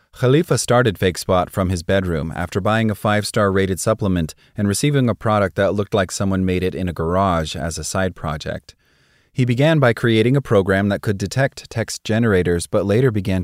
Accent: American